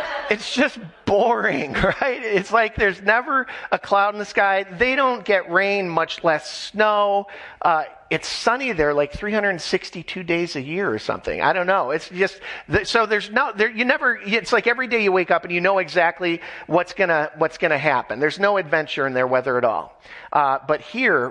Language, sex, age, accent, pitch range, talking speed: English, male, 40-59, American, 145-200 Hz, 195 wpm